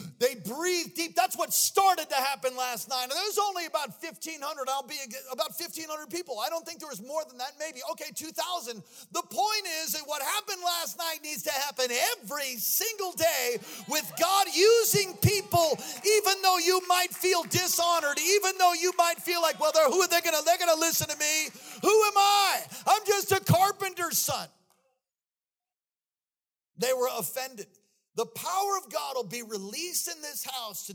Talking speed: 190 wpm